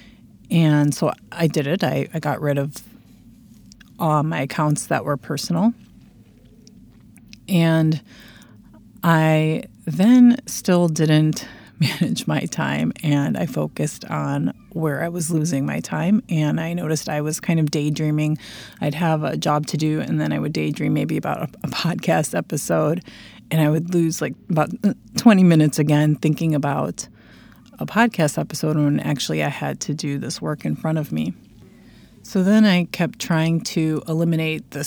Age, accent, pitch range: 30-49, American, 150-170 Hz